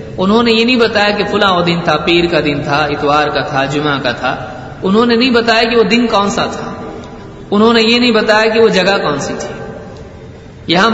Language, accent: English, Indian